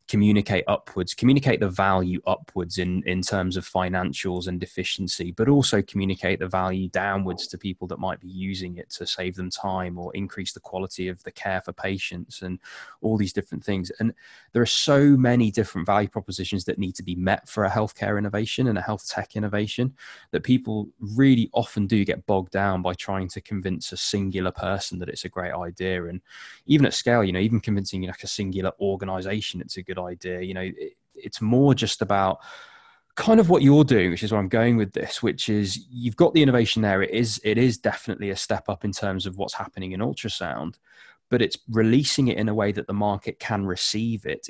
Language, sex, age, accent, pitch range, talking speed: English, male, 20-39, British, 95-110 Hz, 210 wpm